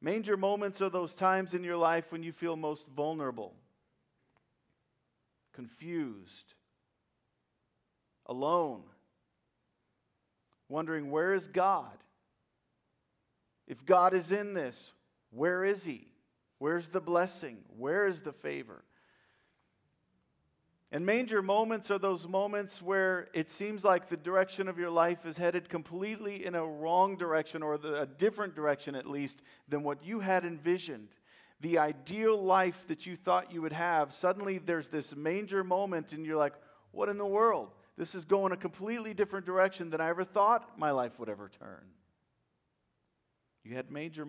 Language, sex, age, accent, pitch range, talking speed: English, male, 40-59, American, 150-190 Hz, 145 wpm